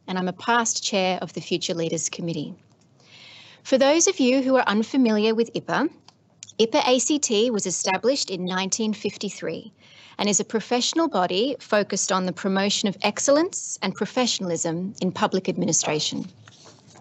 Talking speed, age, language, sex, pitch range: 145 wpm, 30-49, English, female, 190-245 Hz